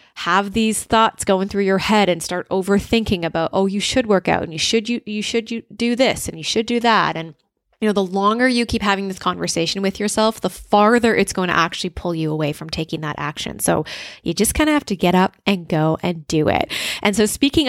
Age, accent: 20-39, American